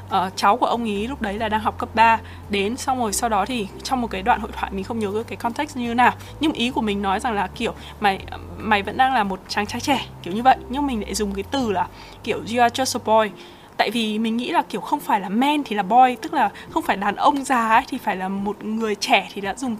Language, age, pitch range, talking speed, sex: Vietnamese, 20-39, 215-275 Hz, 285 wpm, female